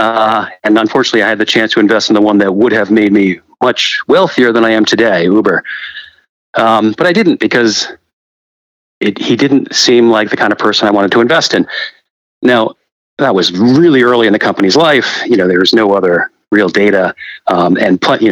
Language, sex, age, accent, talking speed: English, male, 40-59, American, 210 wpm